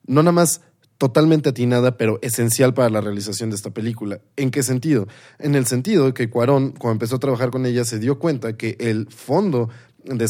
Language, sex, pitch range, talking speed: Spanish, male, 120-145 Hz, 200 wpm